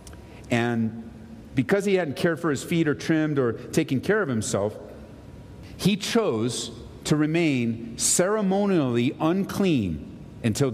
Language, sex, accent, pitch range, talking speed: English, male, American, 120-170 Hz, 125 wpm